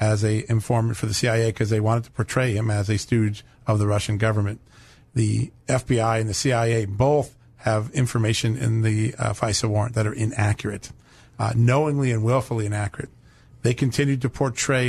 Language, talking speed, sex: English, 175 wpm, male